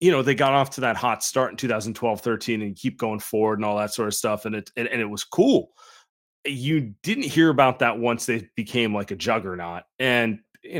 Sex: male